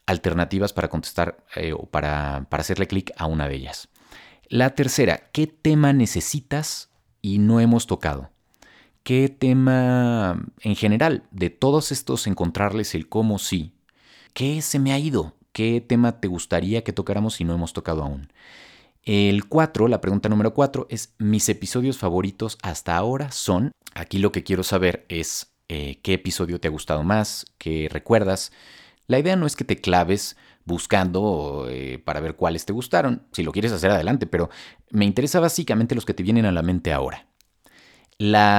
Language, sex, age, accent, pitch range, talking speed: Spanish, male, 30-49, Mexican, 85-120 Hz, 170 wpm